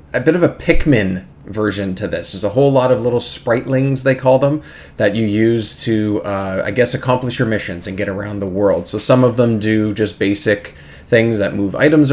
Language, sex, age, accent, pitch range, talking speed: English, male, 20-39, American, 105-130 Hz, 220 wpm